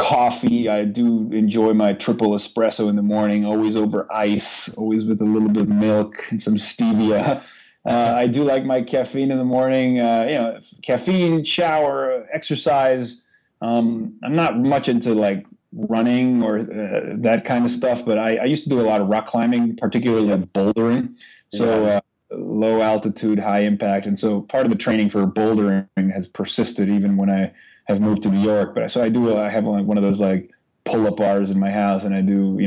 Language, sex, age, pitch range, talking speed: English, male, 30-49, 105-120 Hz, 200 wpm